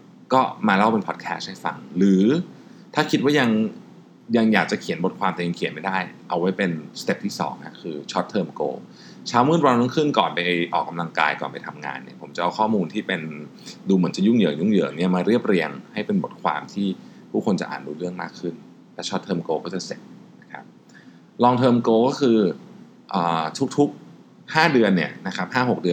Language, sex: Thai, male